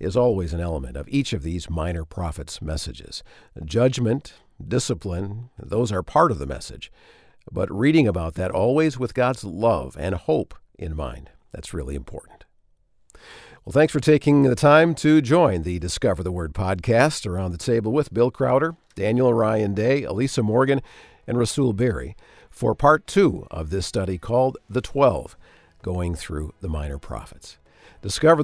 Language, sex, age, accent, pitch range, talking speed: English, male, 50-69, American, 90-130 Hz, 160 wpm